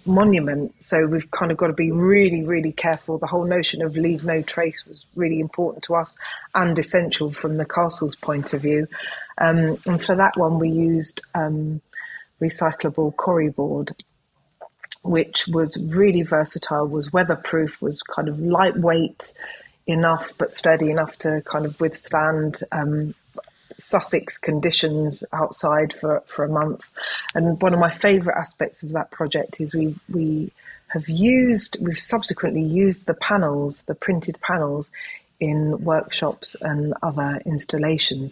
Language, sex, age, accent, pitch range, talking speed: English, female, 30-49, British, 155-175 Hz, 150 wpm